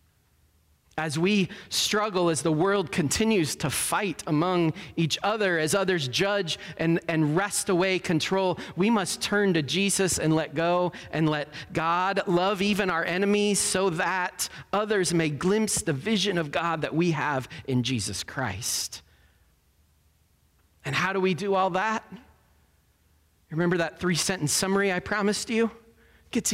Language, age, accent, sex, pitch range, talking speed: English, 30-49, American, male, 150-200 Hz, 150 wpm